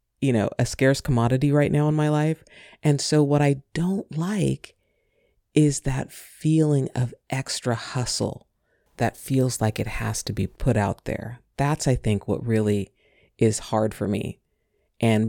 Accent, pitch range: American, 110-140 Hz